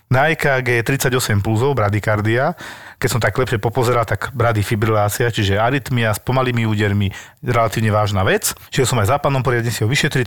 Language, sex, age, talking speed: Slovak, male, 40-59, 170 wpm